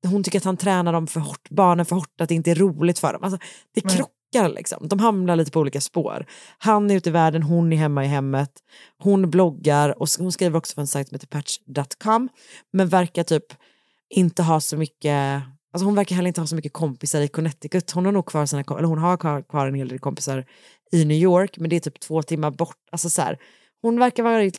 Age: 30-49